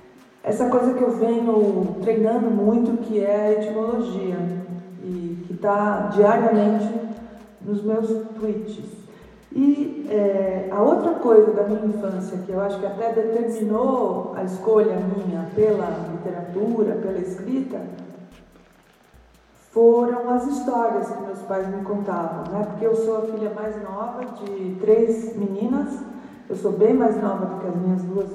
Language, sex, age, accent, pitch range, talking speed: English, female, 40-59, Brazilian, 200-235 Hz, 140 wpm